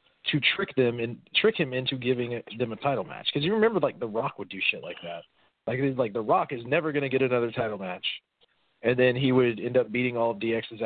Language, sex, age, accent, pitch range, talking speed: English, male, 40-59, American, 110-155 Hz, 250 wpm